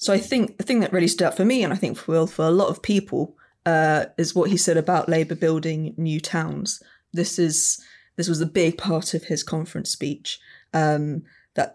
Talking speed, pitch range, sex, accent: 225 wpm, 155-180 Hz, female, British